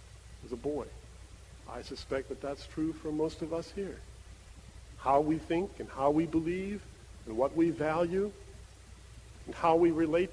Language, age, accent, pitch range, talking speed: English, 50-69, American, 105-165 Hz, 165 wpm